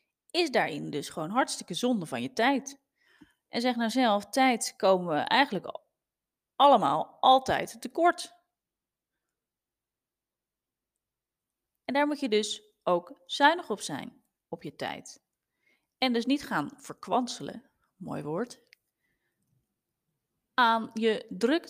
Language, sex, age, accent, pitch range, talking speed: Dutch, female, 30-49, Dutch, 200-270 Hz, 115 wpm